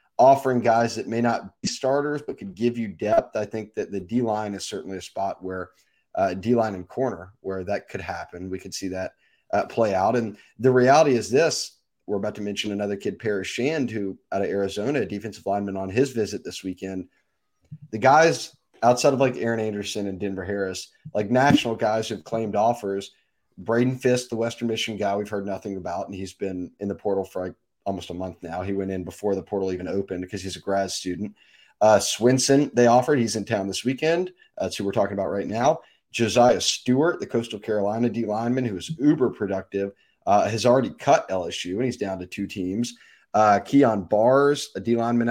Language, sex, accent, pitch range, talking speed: English, male, American, 95-120 Hz, 210 wpm